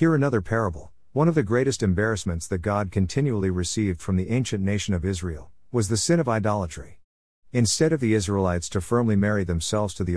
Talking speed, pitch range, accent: 195 wpm, 90-115 Hz, American